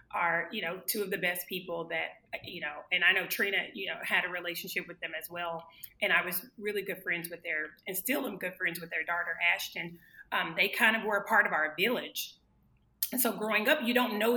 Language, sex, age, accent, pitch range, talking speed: English, female, 30-49, American, 165-190 Hz, 240 wpm